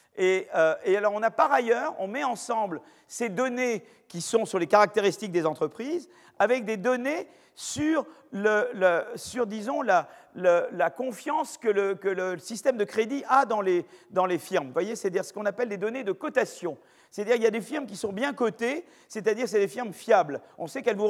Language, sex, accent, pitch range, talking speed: French, male, French, 195-260 Hz, 210 wpm